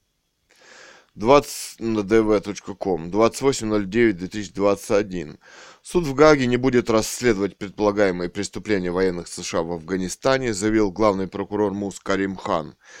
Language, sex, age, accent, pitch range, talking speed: Russian, male, 20-39, native, 100-135 Hz, 95 wpm